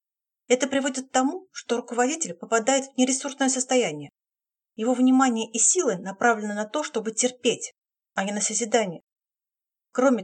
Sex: female